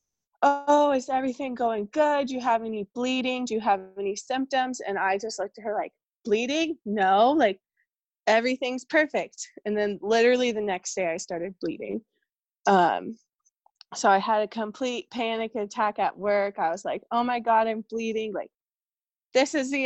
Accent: American